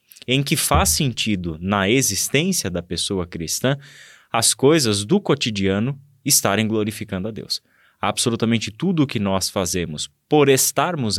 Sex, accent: male, Brazilian